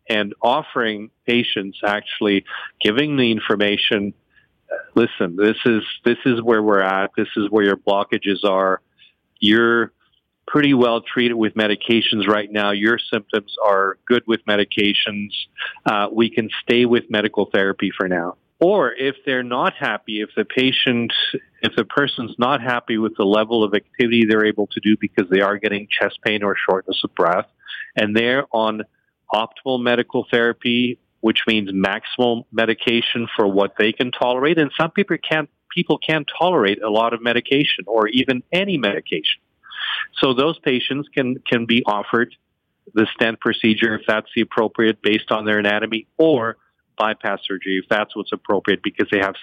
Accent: American